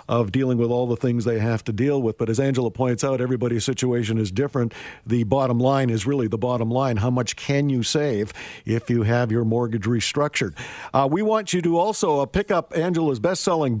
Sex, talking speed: male, 215 wpm